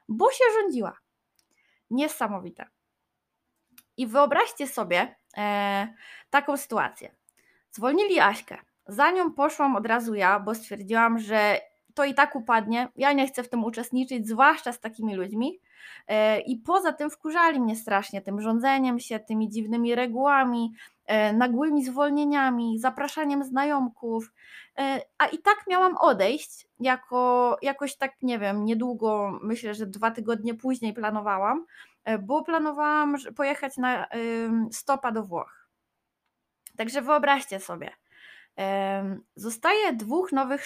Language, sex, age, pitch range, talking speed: Polish, female, 20-39, 225-295 Hz, 120 wpm